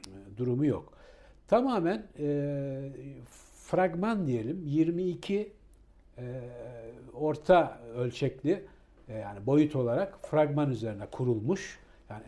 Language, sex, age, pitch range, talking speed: Turkish, male, 60-79, 115-160 Hz, 90 wpm